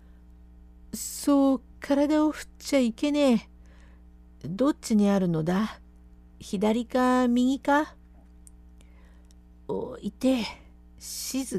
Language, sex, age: Japanese, female, 50-69